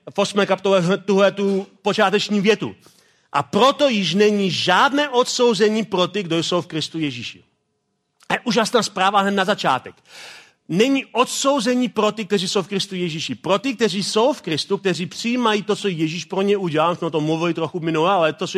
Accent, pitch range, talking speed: native, 165-210 Hz, 180 wpm